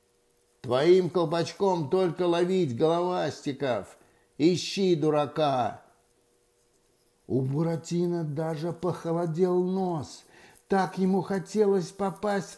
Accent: native